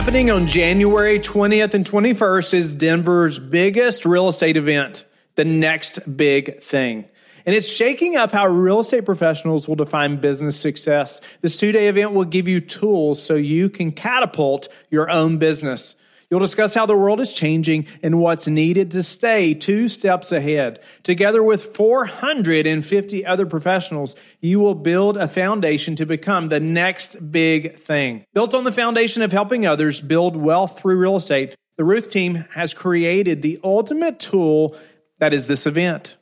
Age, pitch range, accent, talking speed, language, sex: 30-49, 155-200 Hz, American, 160 wpm, English, male